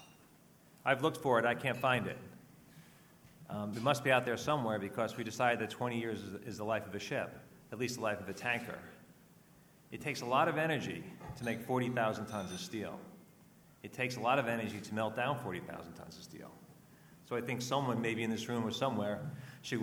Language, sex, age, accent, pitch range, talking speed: English, male, 40-59, American, 105-130 Hz, 210 wpm